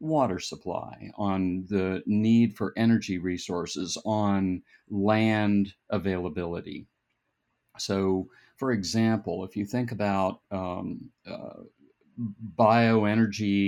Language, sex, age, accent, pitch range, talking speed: English, male, 50-69, American, 100-115 Hz, 90 wpm